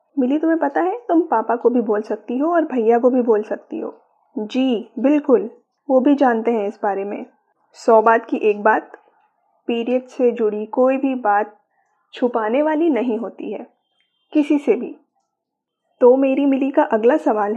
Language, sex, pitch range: Hindi, female, 230-300 Hz